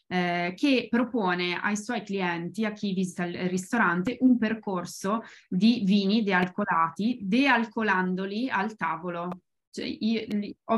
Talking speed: 115 wpm